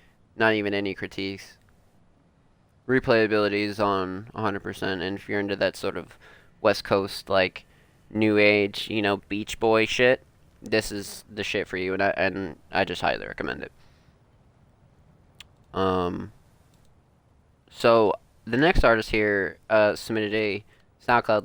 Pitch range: 95-110 Hz